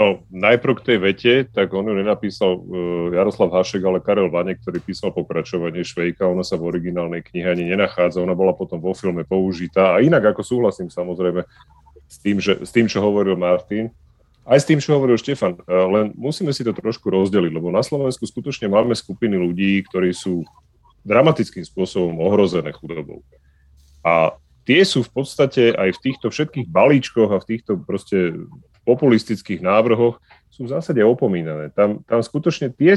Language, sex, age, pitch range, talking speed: Slovak, male, 30-49, 90-125 Hz, 165 wpm